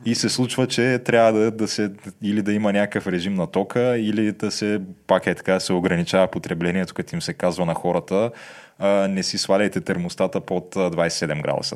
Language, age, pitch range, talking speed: Bulgarian, 20-39, 90-105 Hz, 195 wpm